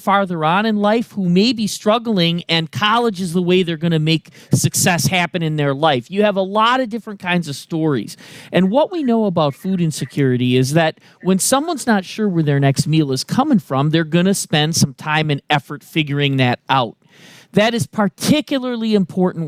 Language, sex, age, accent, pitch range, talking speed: English, male, 40-59, American, 150-210 Hz, 205 wpm